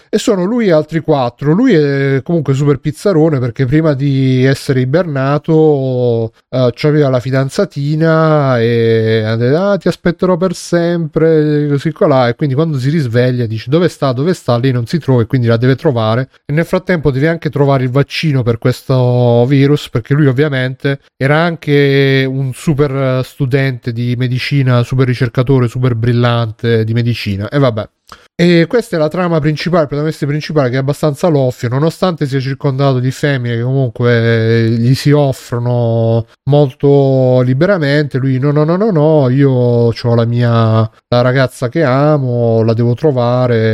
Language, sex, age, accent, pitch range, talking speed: Italian, male, 30-49, native, 125-155 Hz, 165 wpm